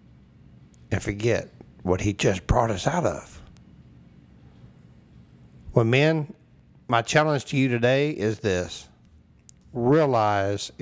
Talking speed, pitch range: 105 wpm, 90-125 Hz